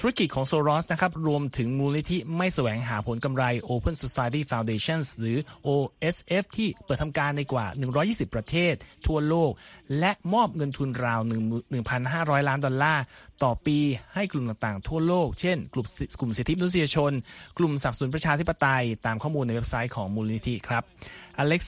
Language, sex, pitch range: Thai, male, 120-160 Hz